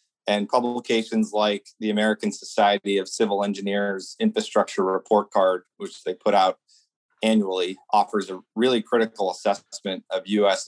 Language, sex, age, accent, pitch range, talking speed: English, male, 40-59, American, 100-130 Hz, 135 wpm